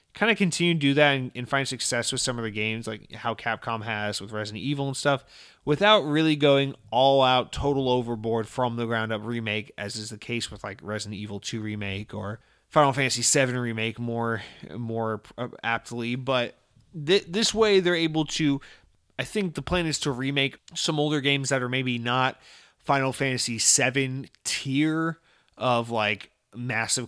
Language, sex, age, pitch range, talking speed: English, male, 30-49, 115-145 Hz, 180 wpm